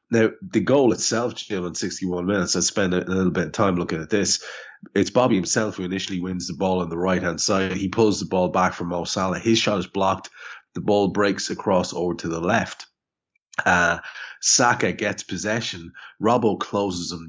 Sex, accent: male, Irish